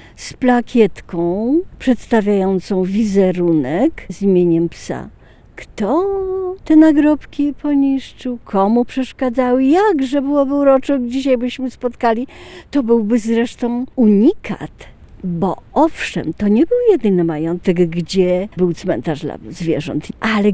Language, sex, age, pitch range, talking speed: Polish, female, 50-69, 175-245 Hz, 105 wpm